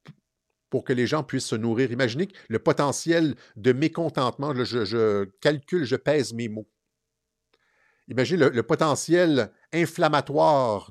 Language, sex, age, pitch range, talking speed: English, male, 50-69, 115-150 Hz, 130 wpm